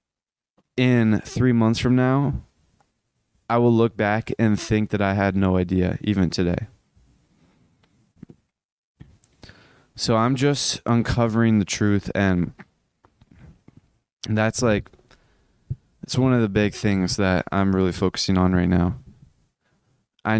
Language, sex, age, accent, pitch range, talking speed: English, male, 20-39, American, 95-115 Hz, 120 wpm